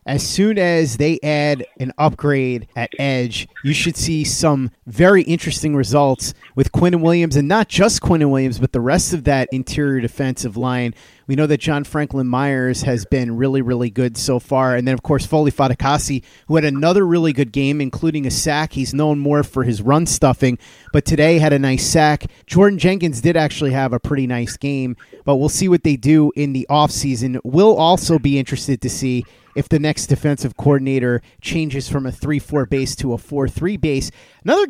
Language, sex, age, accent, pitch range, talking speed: English, male, 30-49, American, 130-160 Hz, 195 wpm